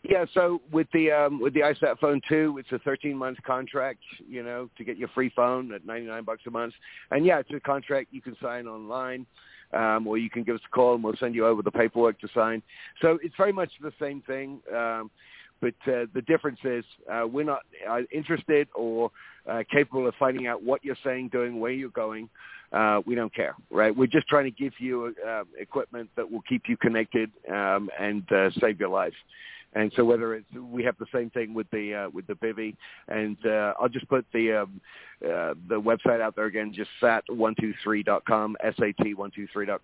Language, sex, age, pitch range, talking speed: English, male, 50-69, 110-130 Hz, 220 wpm